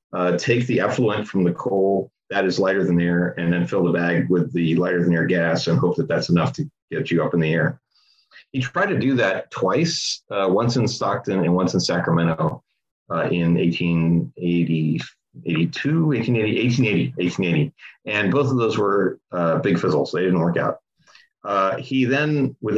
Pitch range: 90-120 Hz